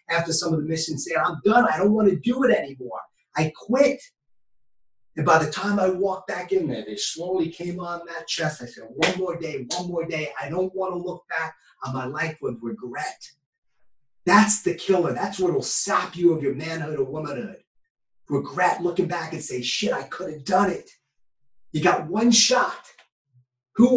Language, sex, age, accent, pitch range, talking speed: English, male, 30-49, American, 140-200 Hz, 200 wpm